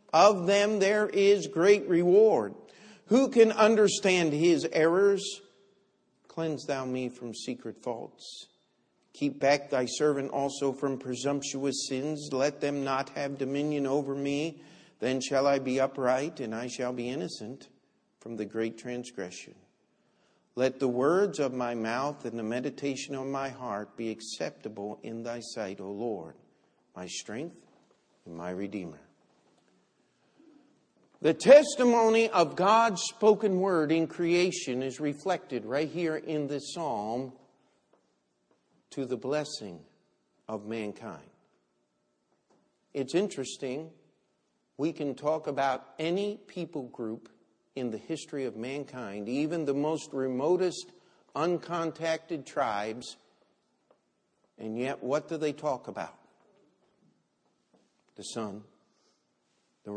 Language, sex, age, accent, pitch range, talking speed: English, male, 50-69, American, 115-165 Hz, 120 wpm